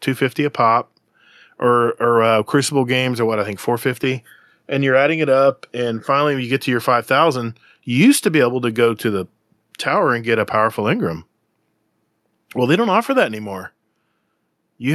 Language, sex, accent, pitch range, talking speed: English, male, American, 115-160 Hz, 195 wpm